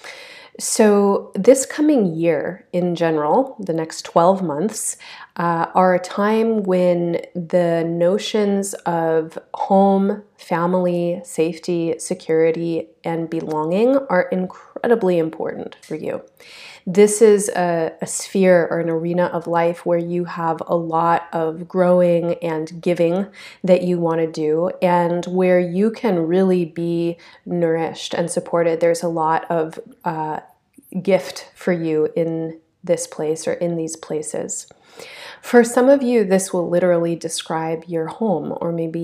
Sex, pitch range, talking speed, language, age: female, 165-185 Hz, 135 wpm, English, 30-49